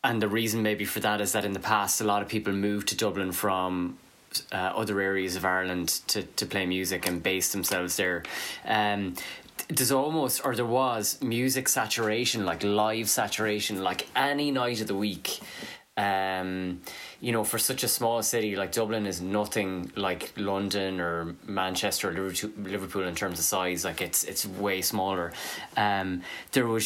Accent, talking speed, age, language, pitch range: Irish, 175 wpm, 20-39, English, 95-110 Hz